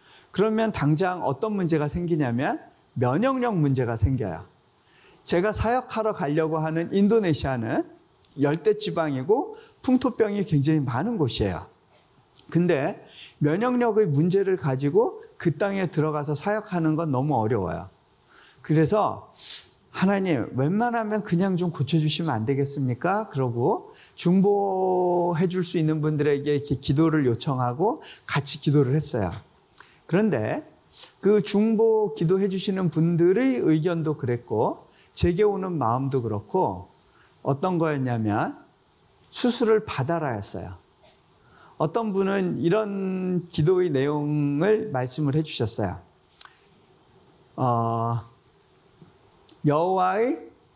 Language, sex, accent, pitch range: Korean, male, native, 135-195 Hz